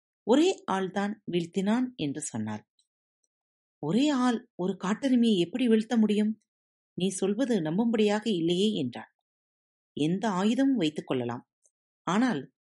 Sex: female